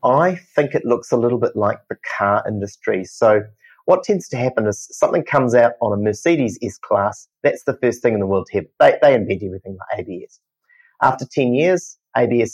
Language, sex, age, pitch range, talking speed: English, male, 30-49, 100-160 Hz, 205 wpm